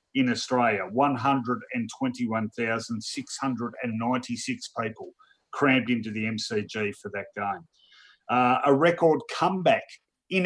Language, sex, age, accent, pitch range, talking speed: English, male, 40-59, Australian, 110-140 Hz, 130 wpm